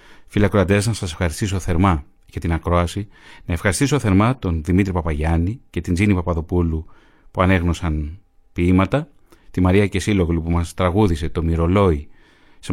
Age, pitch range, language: 30-49, 85-105 Hz, Greek